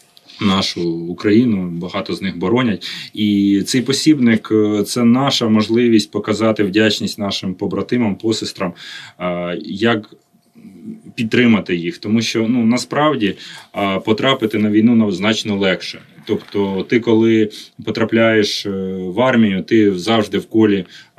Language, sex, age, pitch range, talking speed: Ukrainian, male, 30-49, 105-120 Hz, 115 wpm